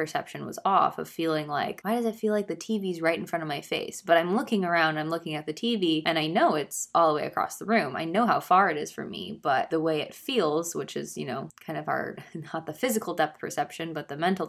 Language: English